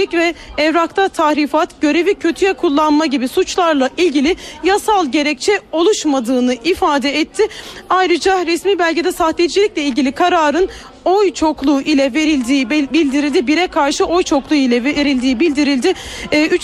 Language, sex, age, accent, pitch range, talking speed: Turkish, female, 40-59, native, 300-370 Hz, 120 wpm